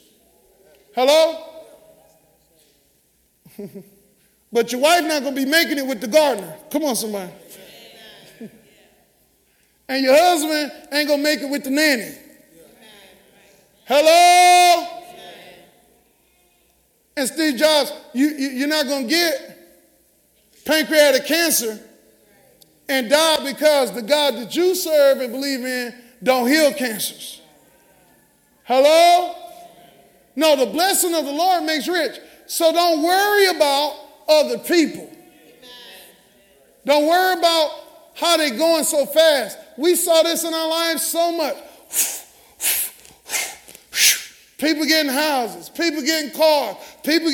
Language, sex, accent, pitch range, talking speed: English, male, American, 275-345 Hz, 115 wpm